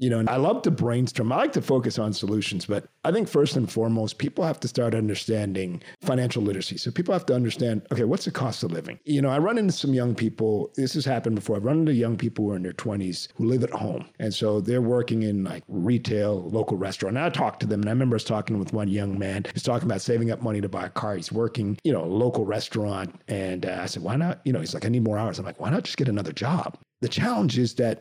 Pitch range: 105-135 Hz